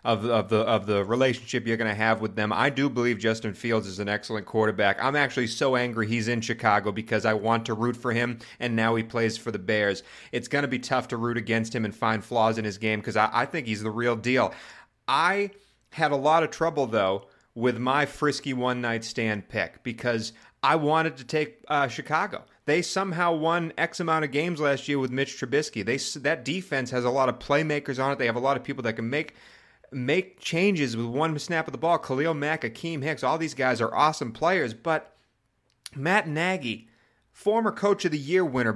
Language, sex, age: English, male, 30-49